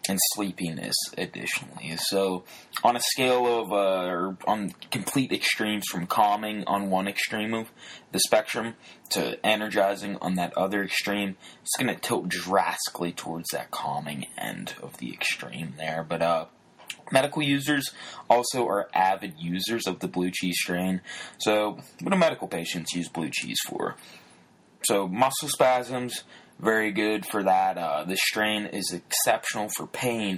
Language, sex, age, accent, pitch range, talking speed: English, male, 20-39, American, 90-110 Hz, 150 wpm